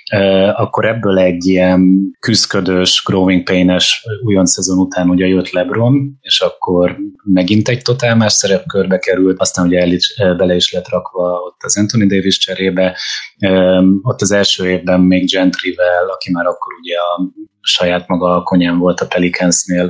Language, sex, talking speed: Hungarian, male, 165 wpm